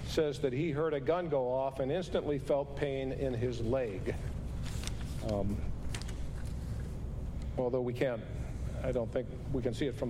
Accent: American